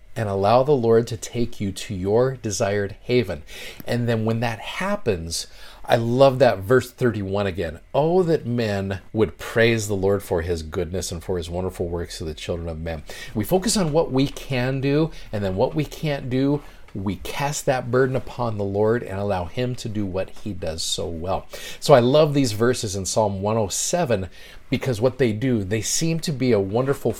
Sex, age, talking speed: male, 40-59, 200 wpm